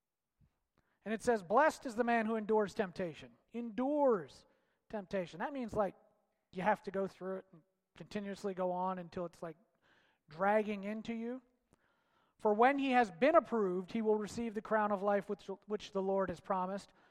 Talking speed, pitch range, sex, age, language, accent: 175 wpm, 190-235 Hz, male, 40-59, English, American